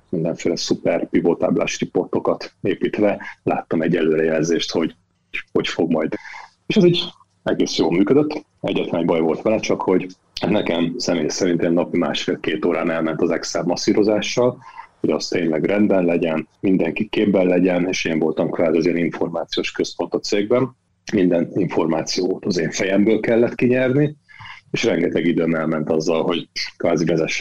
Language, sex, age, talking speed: Hungarian, male, 40-59, 145 wpm